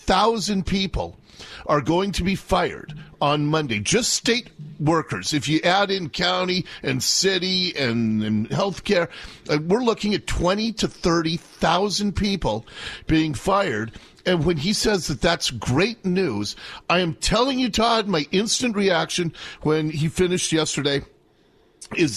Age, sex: 40-59, male